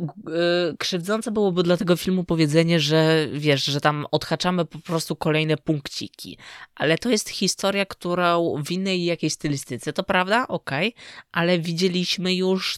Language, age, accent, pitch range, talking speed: Polish, 20-39, native, 135-175 Hz, 140 wpm